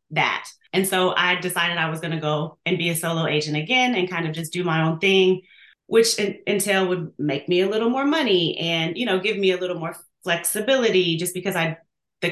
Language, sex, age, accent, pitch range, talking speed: English, female, 30-49, American, 160-185 Hz, 225 wpm